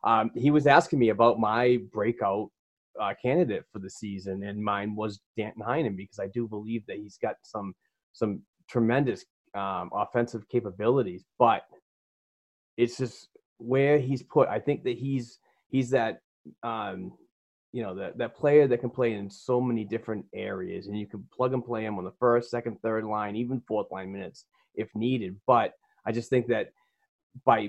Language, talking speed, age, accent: English, 180 wpm, 30-49, American